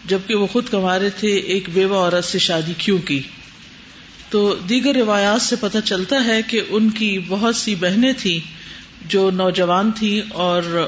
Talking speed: 165 wpm